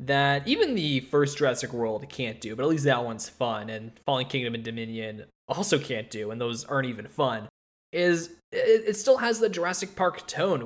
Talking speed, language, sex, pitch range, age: 205 wpm, English, male, 120-155 Hz, 20-39